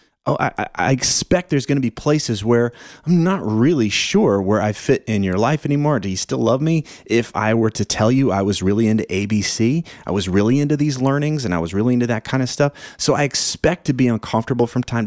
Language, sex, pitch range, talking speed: English, male, 100-130 Hz, 235 wpm